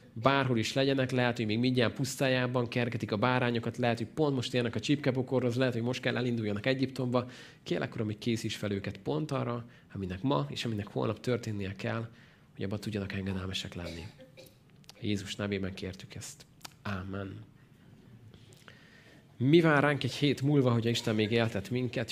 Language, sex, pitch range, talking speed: Hungarian, male, 110-140 Hz, 165 wpm